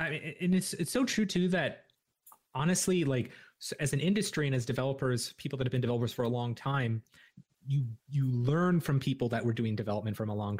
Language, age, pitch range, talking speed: English, 30-49, 115-150 Hz, 220 wpm